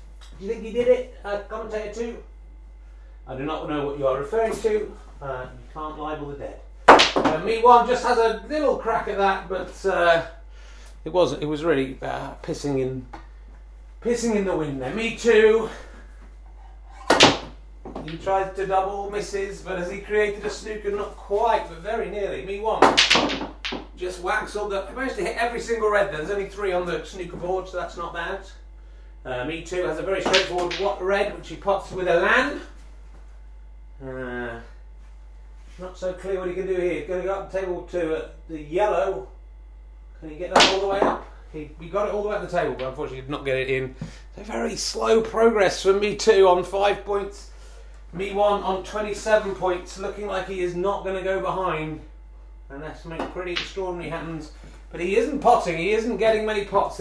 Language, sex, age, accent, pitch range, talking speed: English, male, 30-49, British, 145-205 Hz, 195 wpm